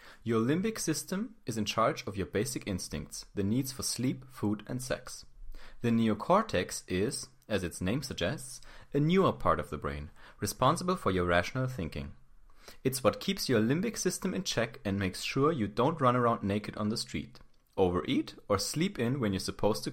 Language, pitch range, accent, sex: English, 100-145 Hz, German, male